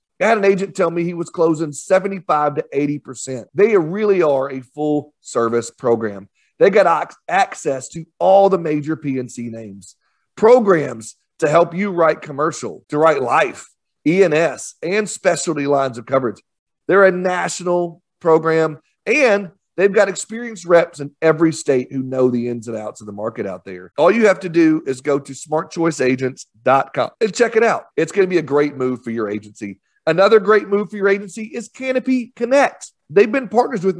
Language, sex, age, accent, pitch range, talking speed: English, male, 40-59, American, 135-190 Hz, 180 wpm